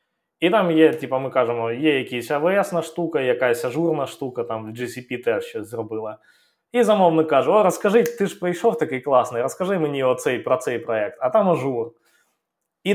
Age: 20-39